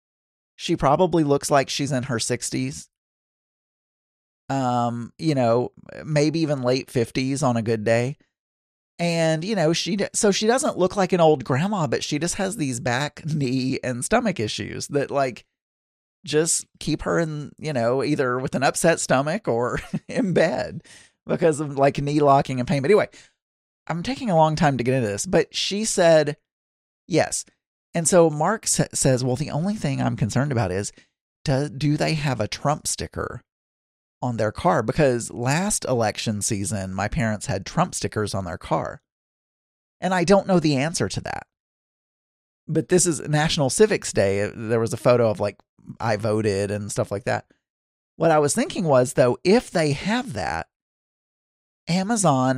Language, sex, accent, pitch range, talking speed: English, male, American, 115-160 Hz, 170 wpm